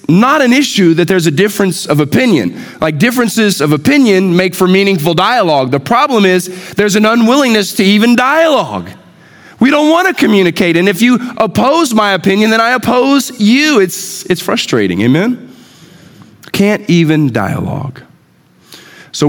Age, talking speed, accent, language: 40-59, 150 wpm, American, English